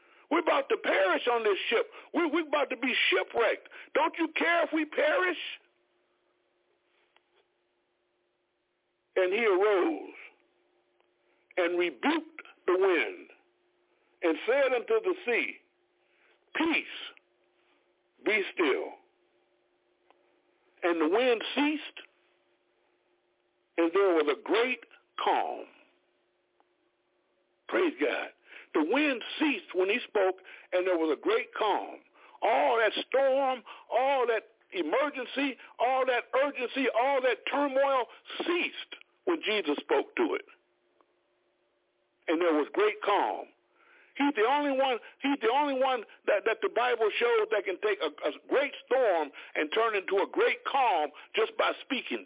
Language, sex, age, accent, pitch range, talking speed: English, male, 60-79, American, 265-425 Hz, 125 wpm